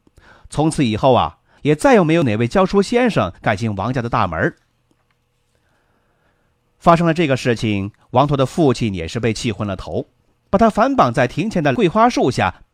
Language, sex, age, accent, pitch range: Chinese, male, 30-49, native, 120-175 Hz